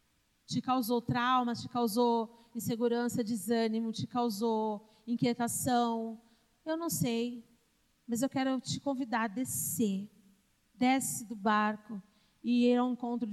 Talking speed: 120 wpm